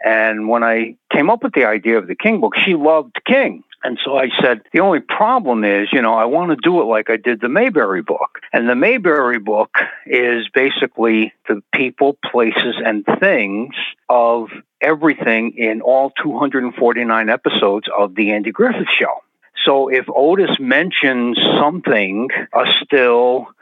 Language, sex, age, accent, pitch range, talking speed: English, male, 60-79, American, 115-160 Hz, 165 wpm